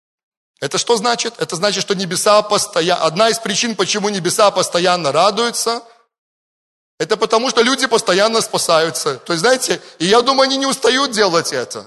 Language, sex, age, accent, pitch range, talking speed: Russian, male, 30-49, native, 165-210 Hz, 160 wpm